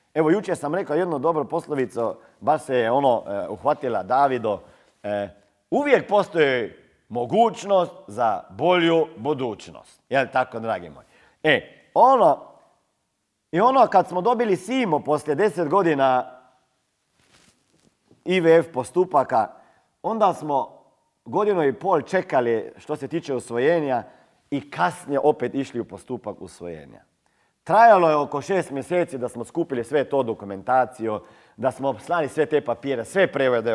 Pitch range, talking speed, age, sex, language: 100-150 Hz, 130 wpm, 40-59, male, Croatian